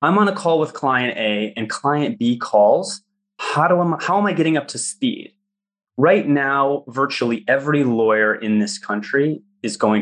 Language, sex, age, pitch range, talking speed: English, male, 30-49, 120-200 Hz, 185 wpm